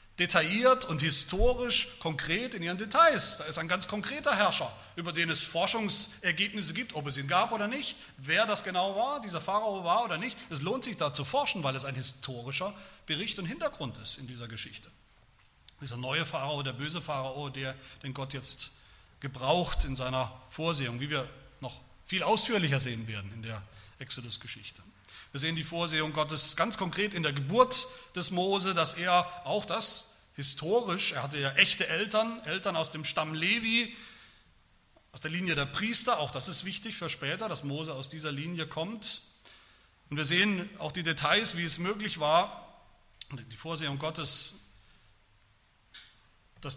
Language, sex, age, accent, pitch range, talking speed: German, male, 40-59, German, 130-190 Hz, 170 wpm